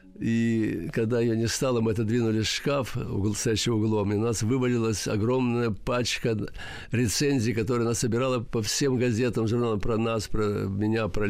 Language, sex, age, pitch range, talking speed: Russian, male, 50-69, 105-130 Hz, 165 wpm